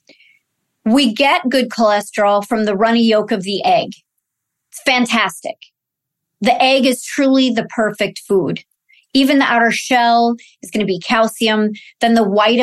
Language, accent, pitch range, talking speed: English, American, 205-250 Hz, 150 wpm